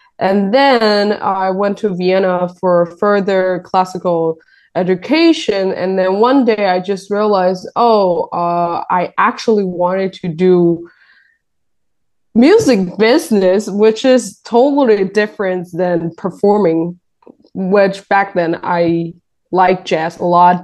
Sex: female